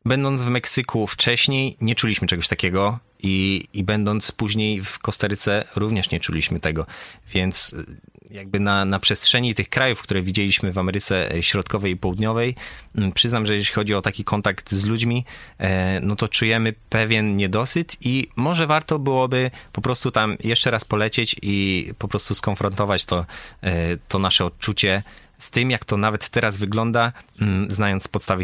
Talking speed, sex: 155 wpm, male